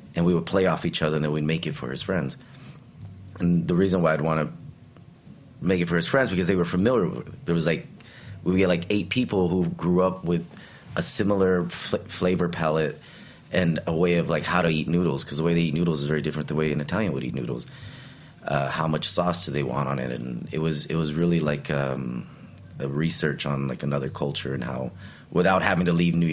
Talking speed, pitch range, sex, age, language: 235 wpm, 75-90 Hz, male, 30-49, English